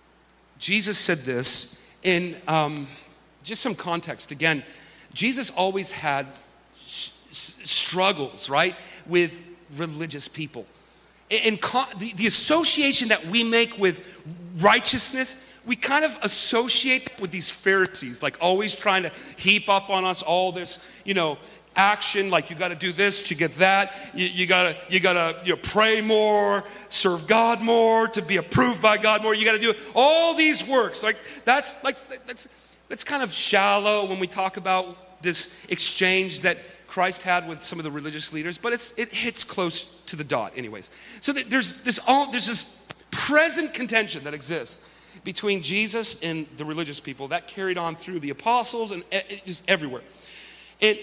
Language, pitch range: English, 175-225 Hz